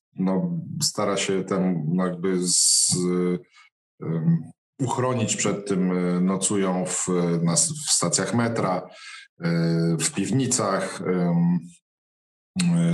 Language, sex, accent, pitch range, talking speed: Polish, male, native, 90-105 Hz, 105 wpm